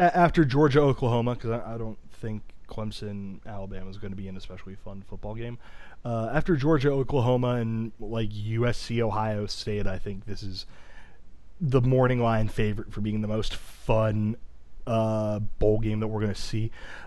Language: English